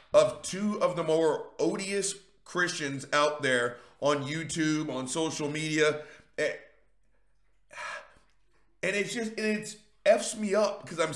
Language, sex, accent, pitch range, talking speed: English, male, American, 150-195 Hz, 130 wpm